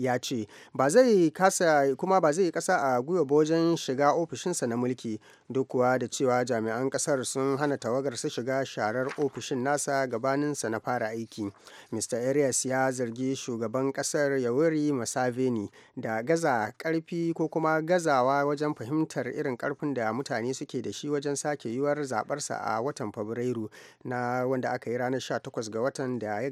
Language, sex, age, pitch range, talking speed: English, male, 30-49, 120-150 Hz, 150 wpm